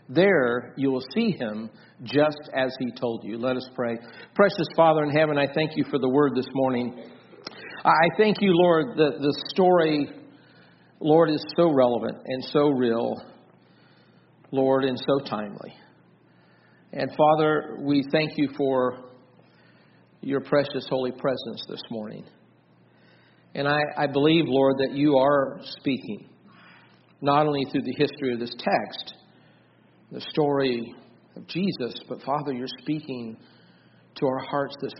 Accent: American